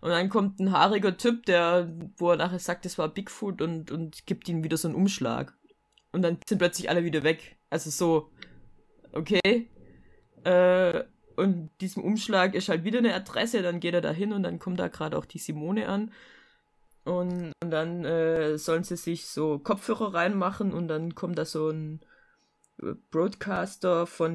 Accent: German